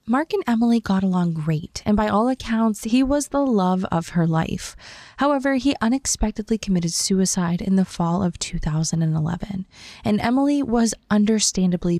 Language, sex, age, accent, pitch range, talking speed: English, female, 20-39, American, 170-235 Hz, 155 wpm